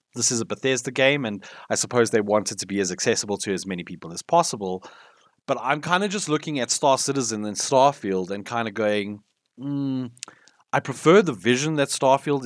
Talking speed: 205 wpm